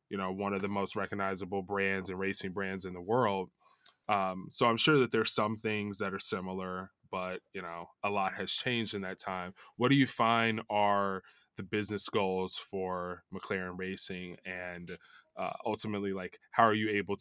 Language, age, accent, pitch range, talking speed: English, 20-39, American, 95-110 Hz, 190 wpm